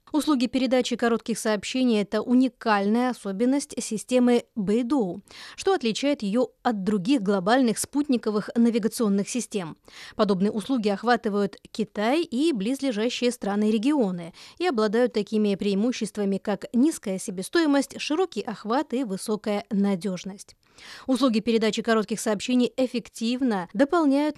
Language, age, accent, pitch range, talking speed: Russian, 20-39, native, 210-260 Hz, 110 wpm